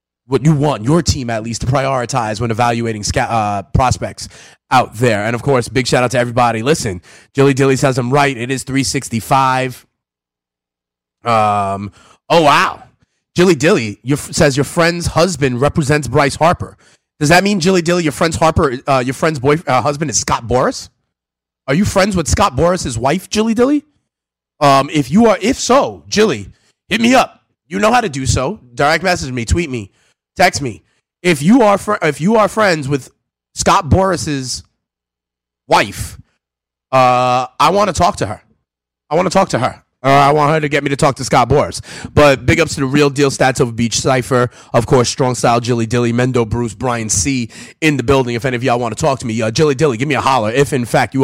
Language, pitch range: English, 110-145 Hz